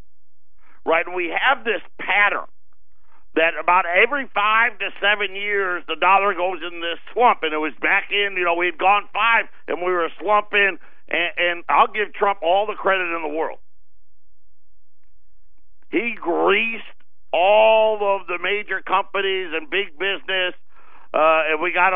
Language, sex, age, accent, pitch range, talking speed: English, male, 50-69, American, 165-220 Hz, 160 wpm